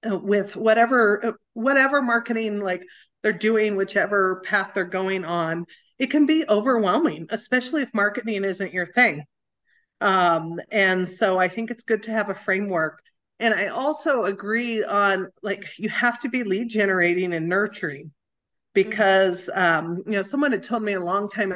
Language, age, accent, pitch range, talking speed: English, 40-59, American, 185-240 Hz, 160 wpm